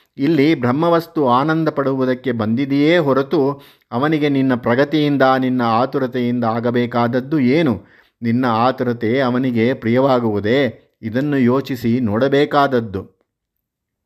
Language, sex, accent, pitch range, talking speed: Kannada, male, native, 125-145 Hz, 85 wpm